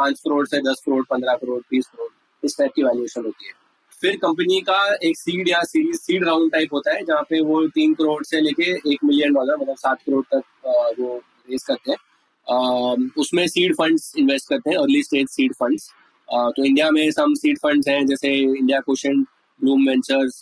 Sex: male